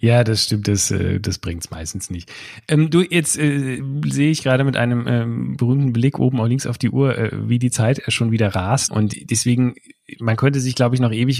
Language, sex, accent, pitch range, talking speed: German, male, German, 105-130 Hz, 225 wpm